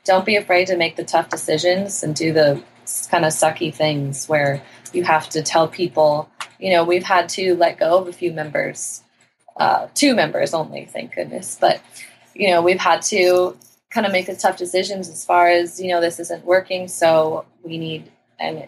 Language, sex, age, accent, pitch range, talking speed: English, female, 20-39, American, 165-185 Hz, 200 wpm